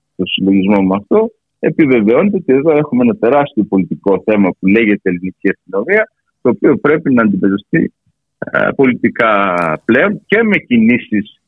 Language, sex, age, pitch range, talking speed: Greek, male, 50-69, 100-165 Hz, 140 wpm